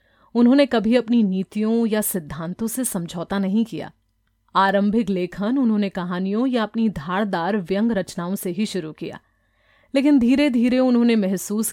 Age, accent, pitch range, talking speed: 30-49, native, 180-230 Hz, 145 wpm